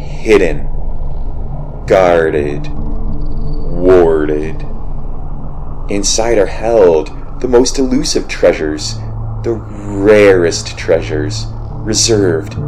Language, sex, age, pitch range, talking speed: English, male, 30-49, 85-115 Hz, 65 wpm